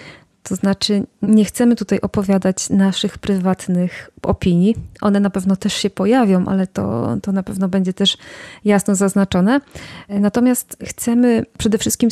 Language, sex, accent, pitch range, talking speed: Polish, female, native, 185-215 Hz, 140 wpm